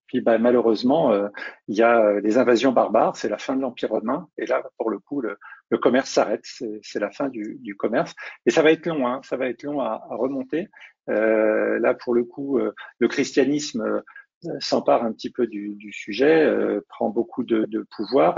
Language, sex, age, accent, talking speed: French, male, 50-69, French, 220 wpm